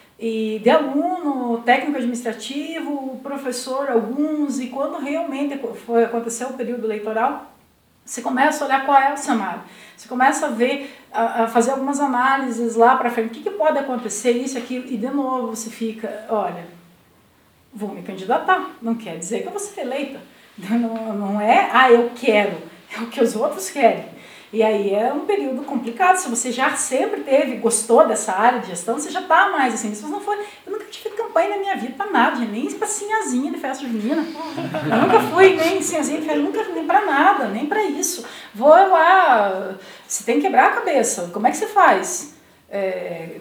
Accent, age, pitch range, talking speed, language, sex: Brazilian, 50-69, 230-315 Hz, 190 wpm, Portuguese, female